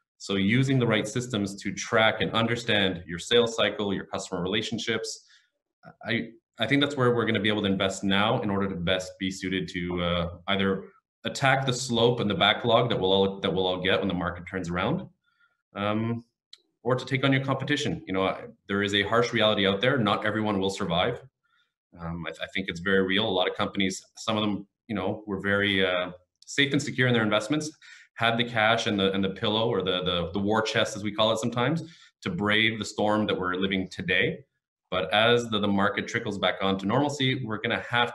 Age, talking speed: 20-39, 225 wpm